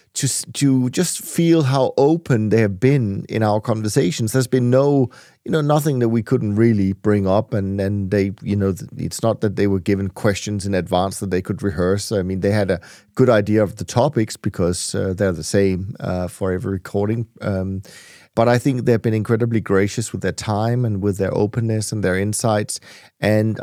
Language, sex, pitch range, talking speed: English, male, 100-120 Hz, 205 wpm